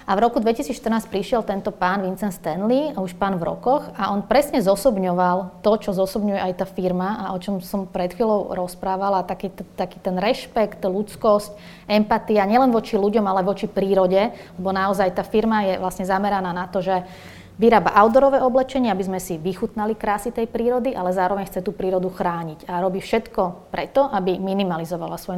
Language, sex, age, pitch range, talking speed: Slovak, female, 20-39, 180-215 Hz, 175 wpm